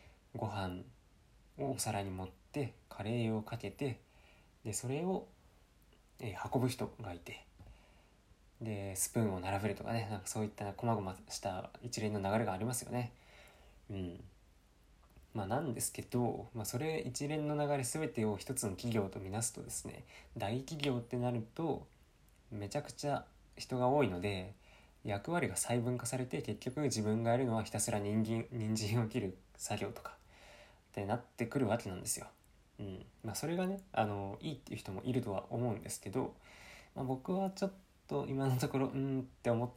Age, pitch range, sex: 20-39, 100-125 Hz, male